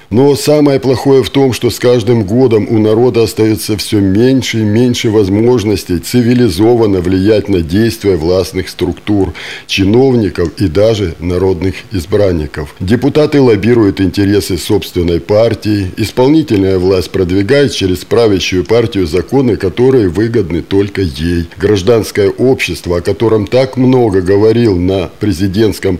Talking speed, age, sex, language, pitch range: 120 wpm, 50-69, male, Russian, 95-125 Hz